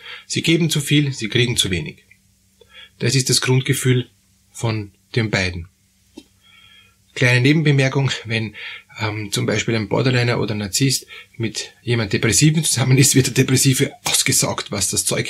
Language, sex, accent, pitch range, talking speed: German, male, Austrian, 105-140 Hz, 150 wpm